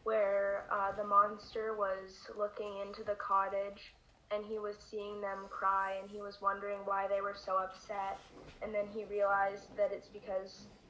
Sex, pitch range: female, 195-210 Hz